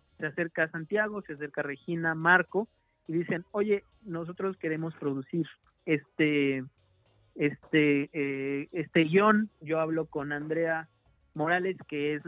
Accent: Mexican